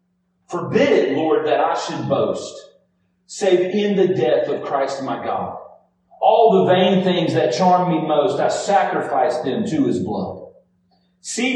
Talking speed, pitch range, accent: 155 wpm, 140-195 Hz, American